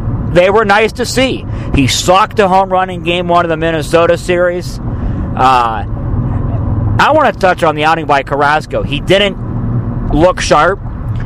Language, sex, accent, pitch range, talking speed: English, male, American, 120-165 Hz, 165 wpm